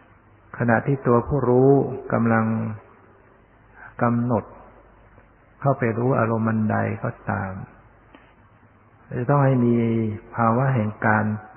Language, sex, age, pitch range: Thai, male, 60-79, 105-120 Hz